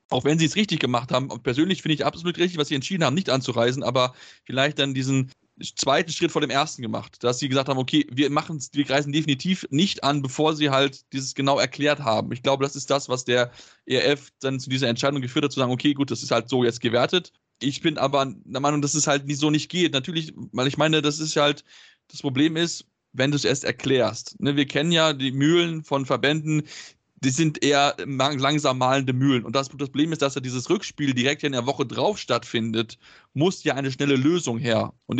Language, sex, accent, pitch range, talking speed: German, male, German, 130-150 Hz, 230 wpm